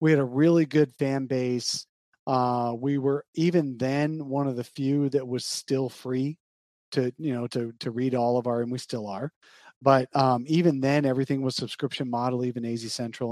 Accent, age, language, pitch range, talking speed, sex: American, 40-59, English, 120-150 Hz, 200 wpm, male